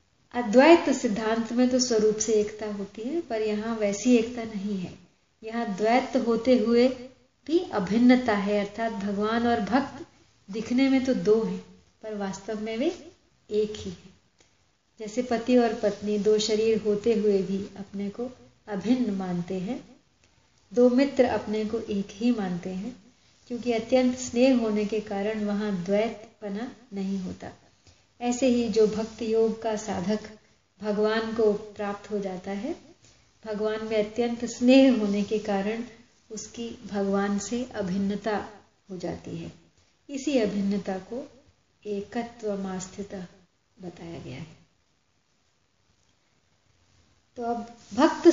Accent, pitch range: native, 200-240 Hz